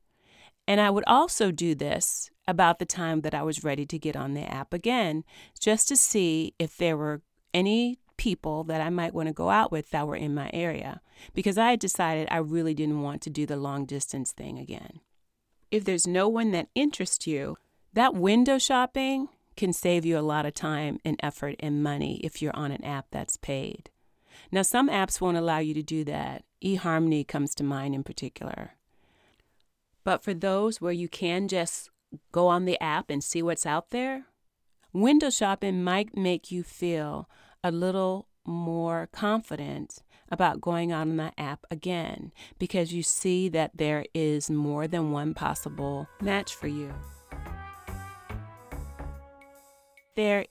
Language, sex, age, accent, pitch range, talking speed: English, female, 40-59, American, 150-185 Hz, 170 wpm